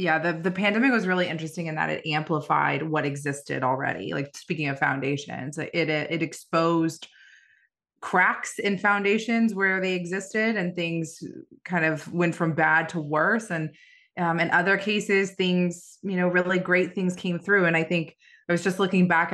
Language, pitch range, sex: English, 155-190 Hz, female